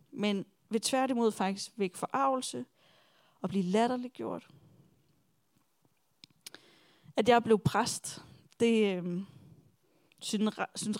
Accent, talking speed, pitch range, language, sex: native, 85 wpm, 195-235 Hz, Danish, female